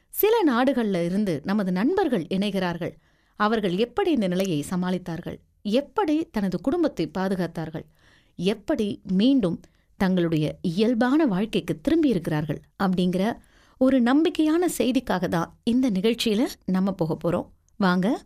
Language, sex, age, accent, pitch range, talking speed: Tamil, female, 30-49, native, 180-270 Hz, 110 wpm